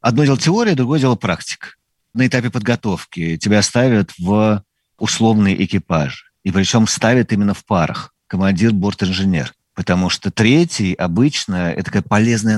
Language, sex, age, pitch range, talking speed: Russian, male, 50-69, 95-115 Hz, 135 wpm